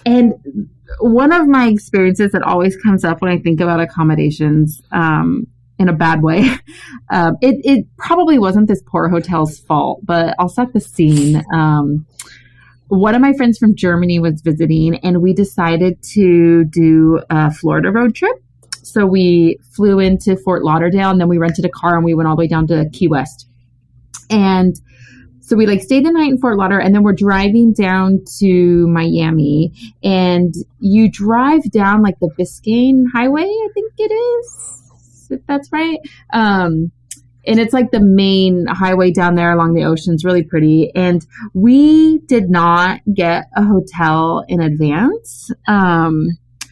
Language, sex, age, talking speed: English, female, 30-49, 165 wpm